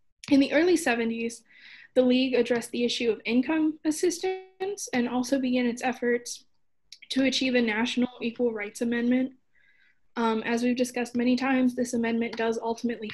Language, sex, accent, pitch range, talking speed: English, female, American, 225-275 Hz, 155 wpm